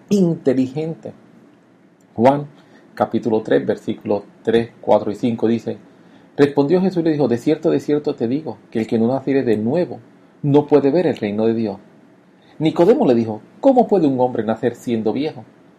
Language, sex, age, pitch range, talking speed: English, male, 40-59, 120-175 Hz, 170 wpm